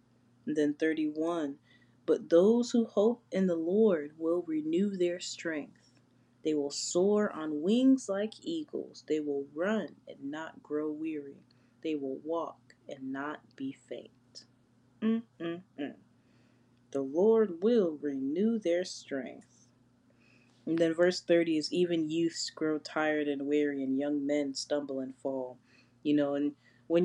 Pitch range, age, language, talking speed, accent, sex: 140-180 Hz, 20-39, English, 140 wpm, American, female